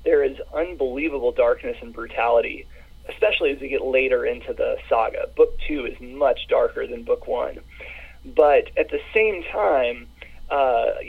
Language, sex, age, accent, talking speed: English, male, 30-49, American, 150 wpm